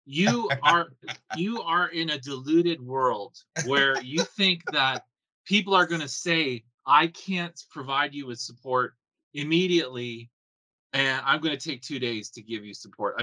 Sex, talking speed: male, 160 wpm